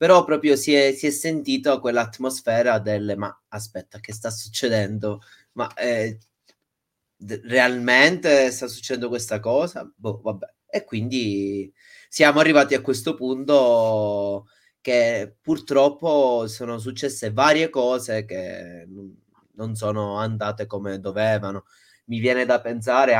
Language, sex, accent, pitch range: Italian, male, native, 110-140 Hz